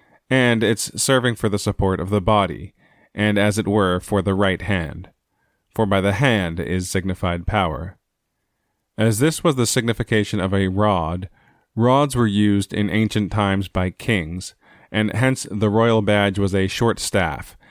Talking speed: 165 wpm